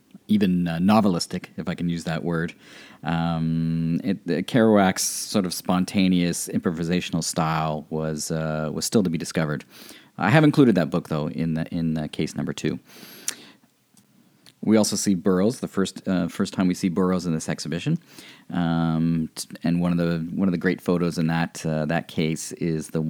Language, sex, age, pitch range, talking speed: English, male, 40-59, 80-95 Hz, 180 wpm